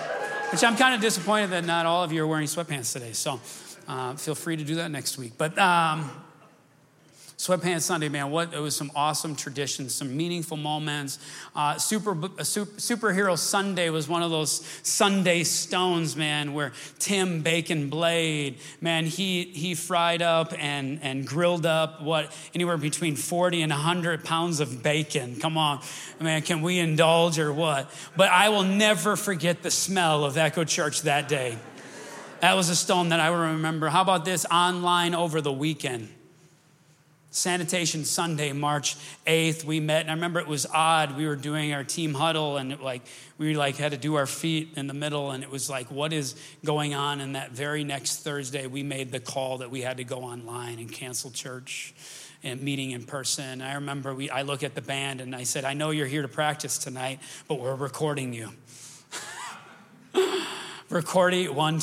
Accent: American